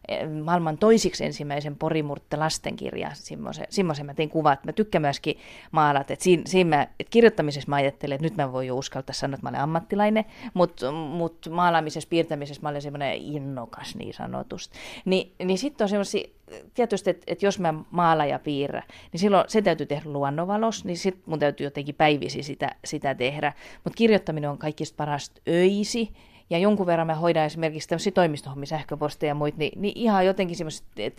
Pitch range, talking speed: 150-205 Hz, 170 wpm